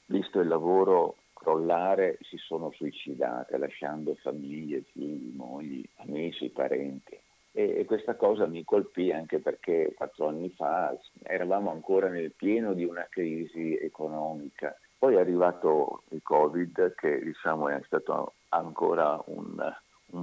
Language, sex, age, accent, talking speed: Italian, male, 50-69, native, 130 wpm